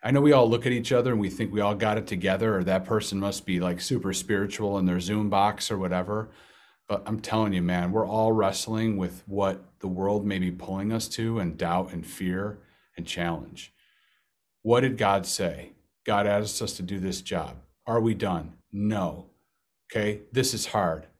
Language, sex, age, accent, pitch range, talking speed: English, male, 40-59, American, 95-110 Hz, 205 wpm